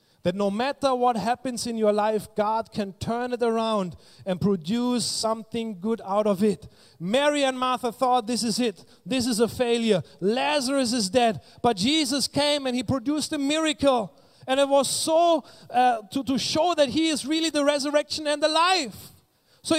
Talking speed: 180 wpm